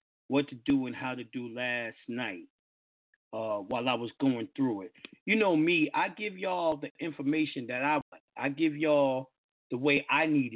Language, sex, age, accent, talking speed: English, male, 40-59, American, 190 wpm